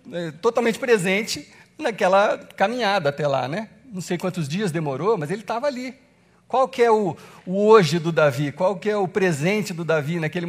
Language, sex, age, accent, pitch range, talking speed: Portuguese, male, 60-79, Brazilian, 170-230 Hz, 185 wpm